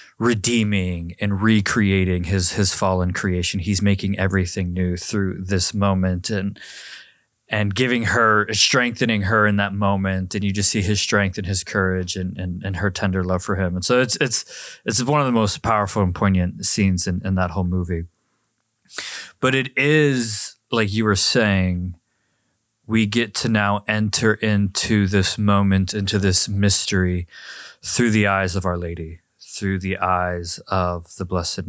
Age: 20-39